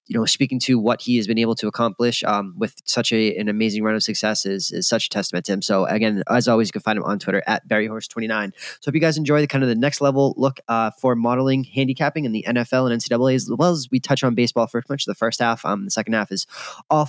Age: 20-39